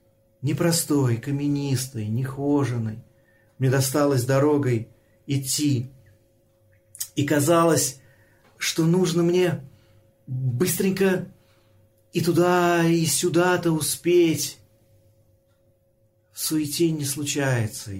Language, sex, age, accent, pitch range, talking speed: Russian, male, 40-59, native, 110-135 Hz, 75 wpm